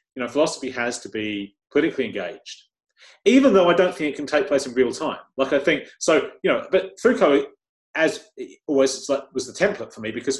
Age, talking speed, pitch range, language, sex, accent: 30-49, 210 wpm, 125-200 Hz, English, male, British